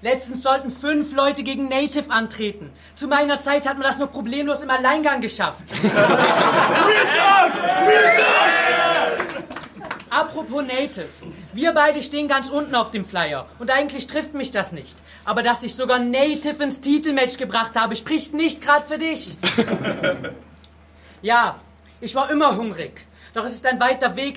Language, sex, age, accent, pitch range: Japanese, female, 40-59, German, 225-270 Hz